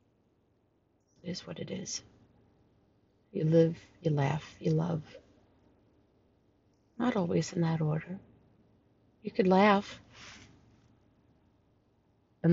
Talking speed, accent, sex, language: 95 wpm, American, female, English